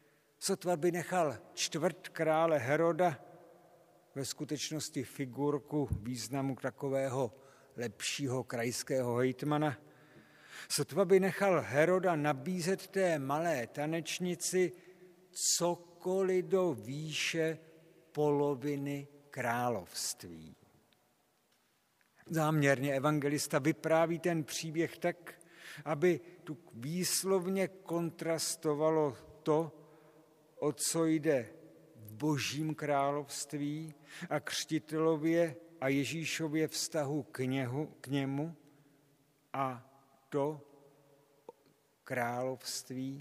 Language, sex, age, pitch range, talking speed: Czech, male, 50-69, 135-170 Hz, 80 wpm